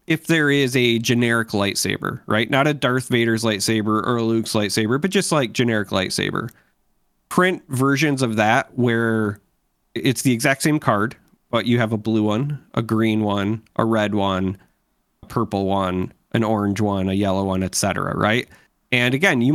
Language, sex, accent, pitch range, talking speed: English, male, American, 105-125 Hz, 175 wpm